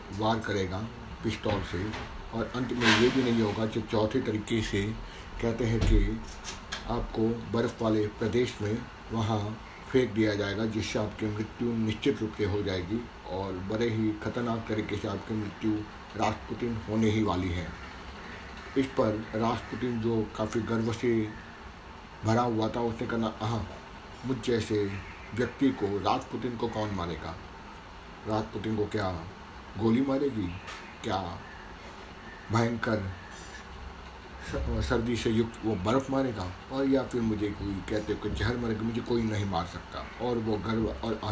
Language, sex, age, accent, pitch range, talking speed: Hindi, male, 50-69, native, 100-115 Hz, 145 wpm